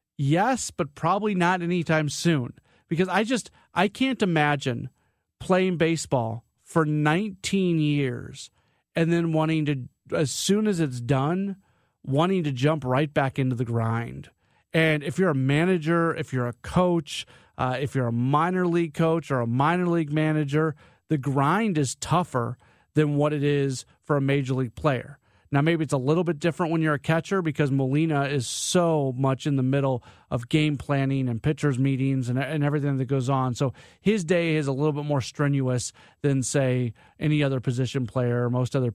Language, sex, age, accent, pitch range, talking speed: English, male, 40-59, American, 130-165 Hz, 180 wpm